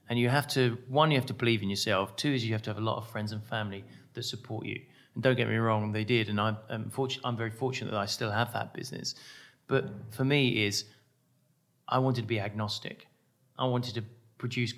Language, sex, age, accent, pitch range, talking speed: English, male, 30-49, British, 115-130 Hz, 240 wpm